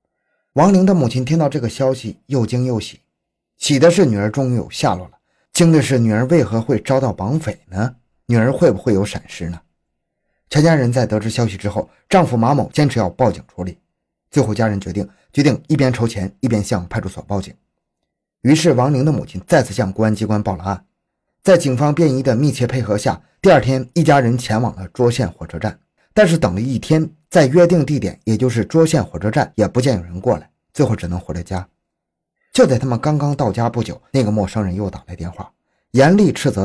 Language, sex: Chinese, male